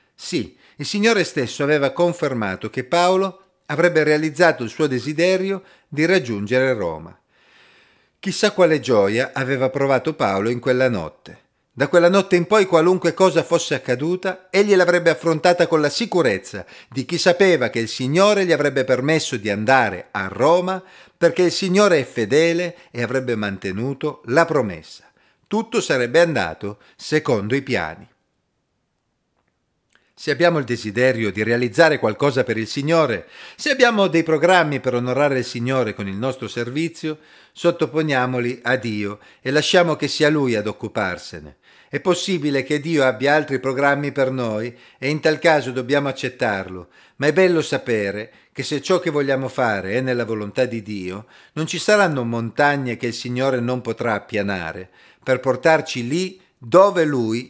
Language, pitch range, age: Italian, 120-170 Hz, 40-59